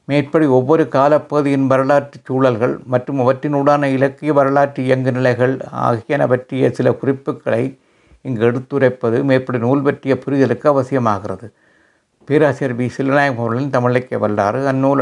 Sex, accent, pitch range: male, native, 125-135 Hz